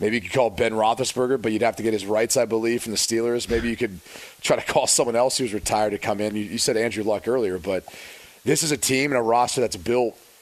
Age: 30-49